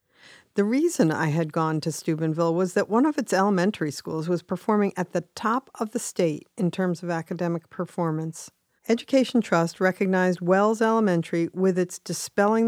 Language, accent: English, American